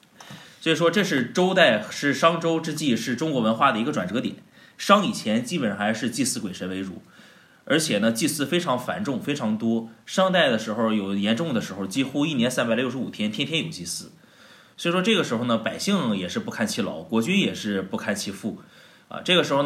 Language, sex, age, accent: Chinese, male, 20-39, native